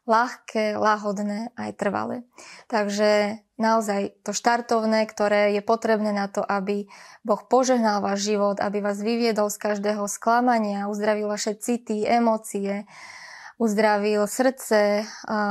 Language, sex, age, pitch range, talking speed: Slovak, female, 20-39, 205-230 Hz, 120 wpm